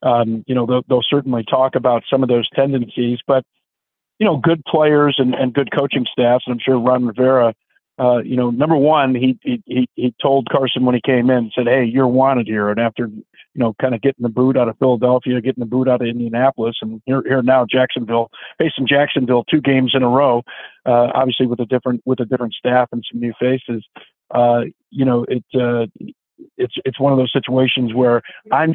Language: English